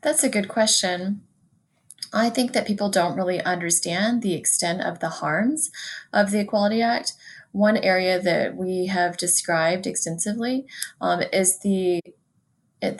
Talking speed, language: 140 wpm, English